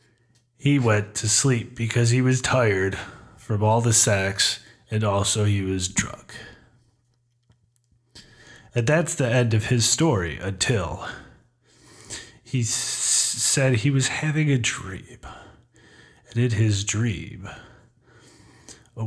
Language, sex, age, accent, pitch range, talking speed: English, male, 30-49, American, 95-120 Hz, 115 wpm